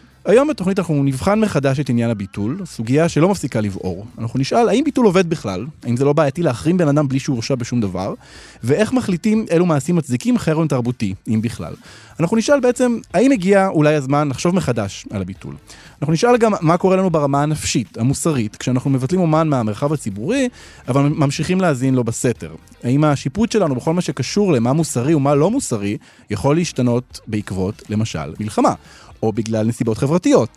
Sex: male